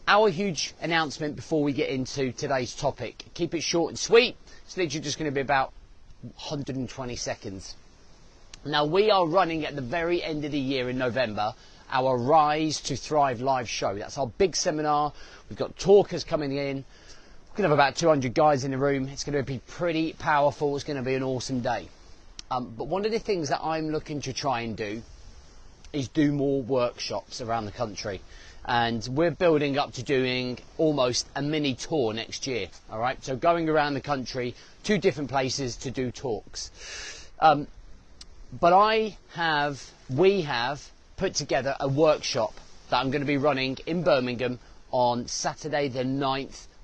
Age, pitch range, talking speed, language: 30-49, 120-155 Hz, 175 wpm, English